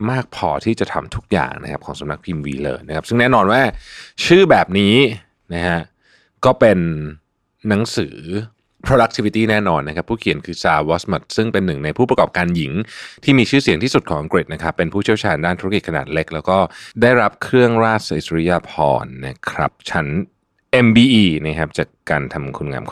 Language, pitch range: Thai, 80-115 Hz